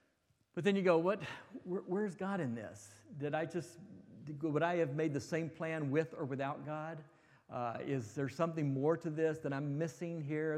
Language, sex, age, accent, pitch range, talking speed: English, male, 50-69, American, 135-175 Hz, 195 wpm